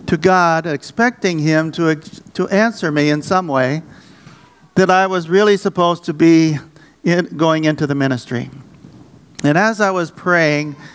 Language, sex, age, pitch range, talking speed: English, male, 50-69, 145-180 Hz, 155 wpm